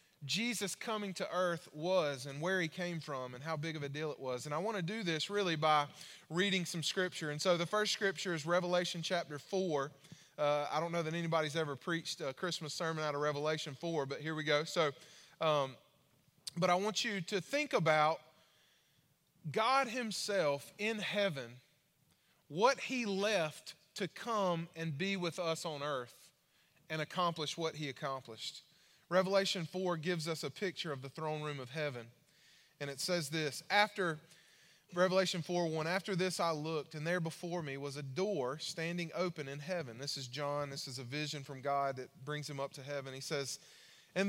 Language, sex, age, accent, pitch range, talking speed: English, male, 20-39, American, 150-185 Hz, 185 wpm